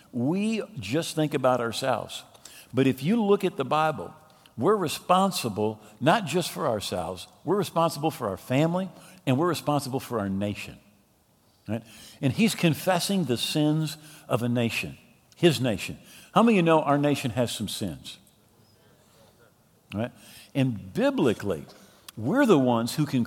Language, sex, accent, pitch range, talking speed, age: English, male, American, 125-170 Hz, 150 wpm, 50-69